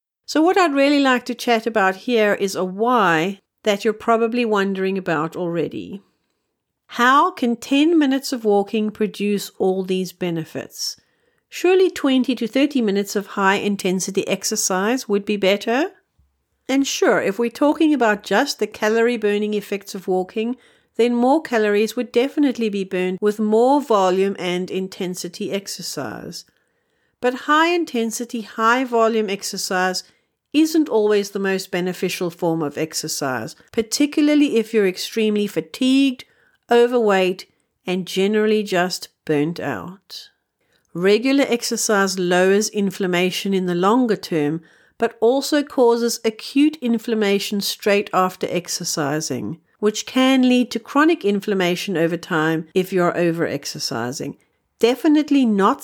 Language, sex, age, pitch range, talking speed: English, female, 50-69, 185-245 Hz, 130 wpm